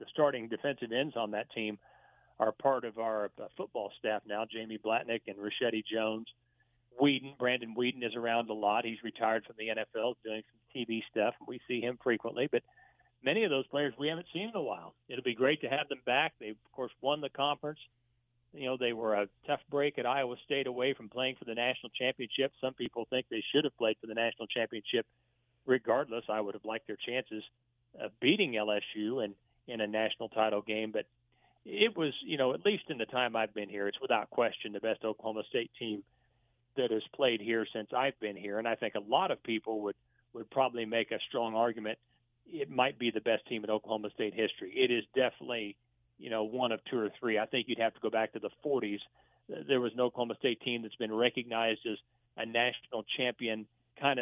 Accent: American